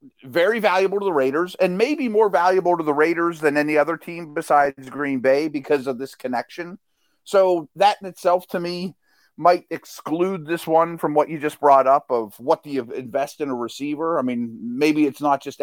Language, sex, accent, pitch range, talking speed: English, male, American, 145-195 Hz, 205 wpm